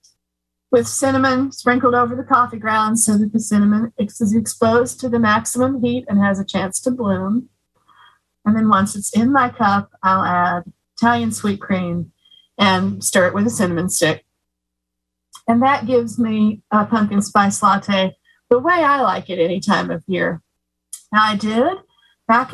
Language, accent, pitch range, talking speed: English, American, 195-255 Hz, 170 wpm